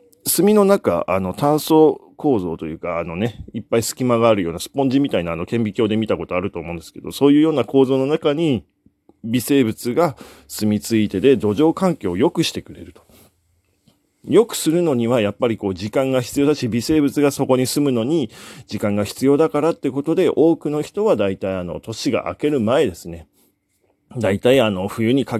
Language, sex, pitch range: Japanese, male, 100-150 Hz